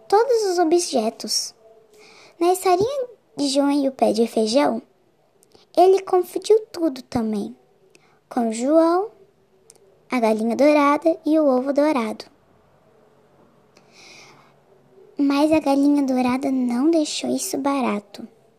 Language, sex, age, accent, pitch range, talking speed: Portuguese, male, 10-29, Brazilian, 225-320 Hz, 105 wpm